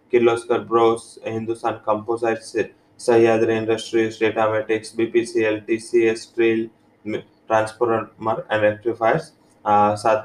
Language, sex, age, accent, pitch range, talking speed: English, male, 20-39, Indian, 110-120 Hz, 95 wpm